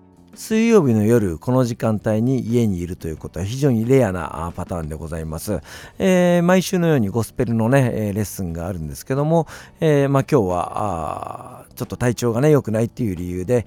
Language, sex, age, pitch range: Japanese, male, 50-69, 90-130 Hz